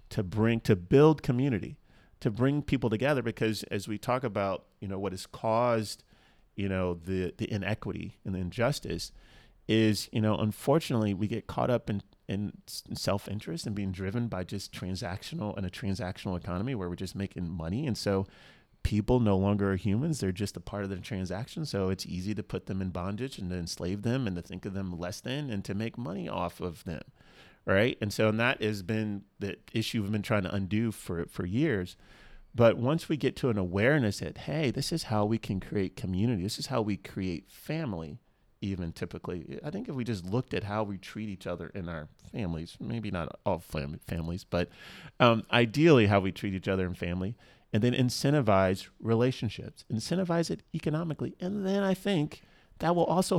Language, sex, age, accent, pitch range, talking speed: English, male, 30-49, American, 95-120 Hz, 200 wpm